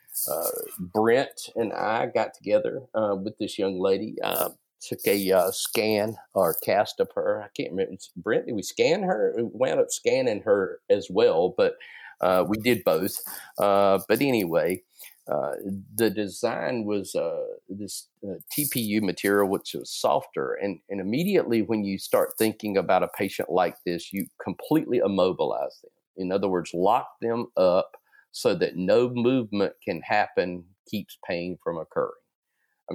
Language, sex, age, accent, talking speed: English, male, 50-69, American, 160 wpm